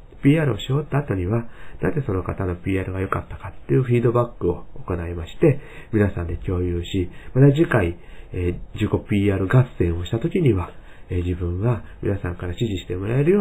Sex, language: male, Japanese